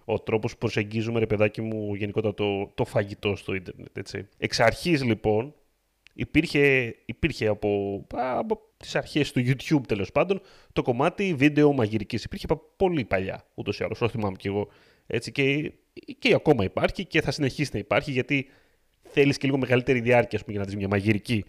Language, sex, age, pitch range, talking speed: Greek, male, 30-49, 105-150 Hz, 175 wpm